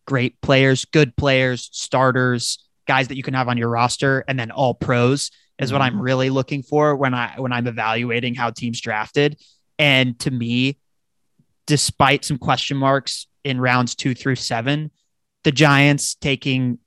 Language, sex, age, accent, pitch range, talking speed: English, male, 20-39, American, 125-145 Hz, 165 wpm